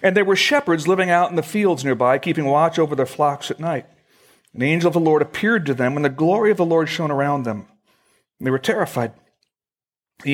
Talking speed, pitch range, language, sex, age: 225 wpm, 140-185 Hz, English, male, 60-79